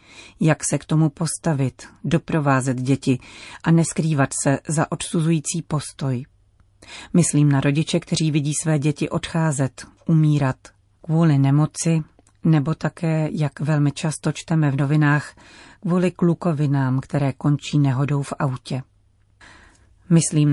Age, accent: 40-59, native